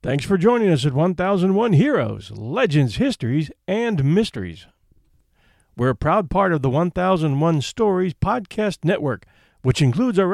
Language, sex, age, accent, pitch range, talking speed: English, male, 50-69, American, 130-185 Hz, 140 wpm